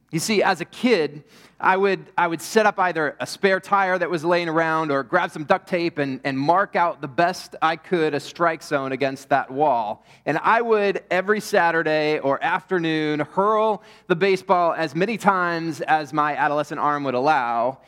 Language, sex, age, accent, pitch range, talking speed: English, male, 30-49, American, 150-195 Hz, 190 wpm